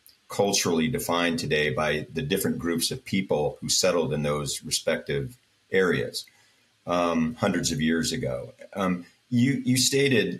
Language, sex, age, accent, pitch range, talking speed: English, male, 40-59, American, 75-90 Hz, 140 wpm